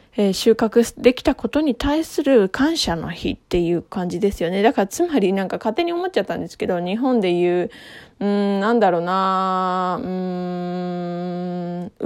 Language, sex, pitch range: Japanese, female, 185-260 Hz